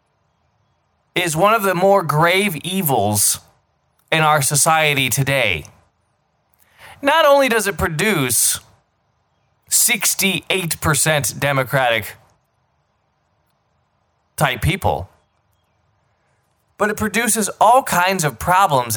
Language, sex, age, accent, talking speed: English, male, 20-39, American, 80 wpm